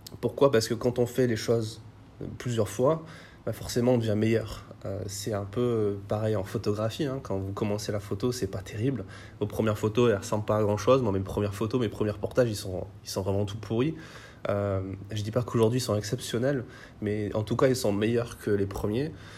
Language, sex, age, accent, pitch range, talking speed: French, male, 20-39, French, 105-120 Hz, 225 wpm